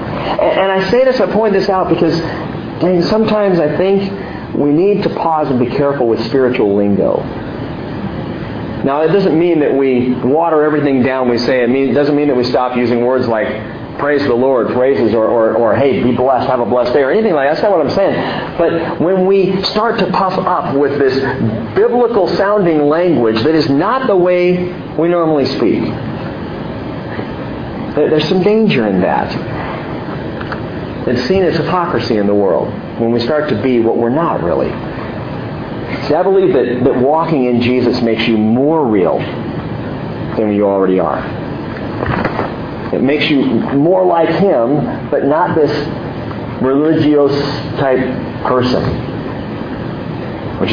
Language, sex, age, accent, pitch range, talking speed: English, male, 50-69, American, 120-180 Hz, 160 wpm